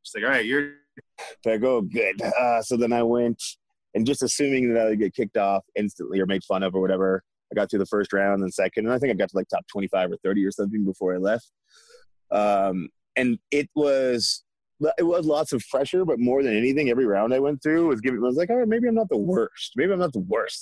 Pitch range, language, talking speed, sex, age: 105-150 Hz, English, 255 wpm, male, 20-39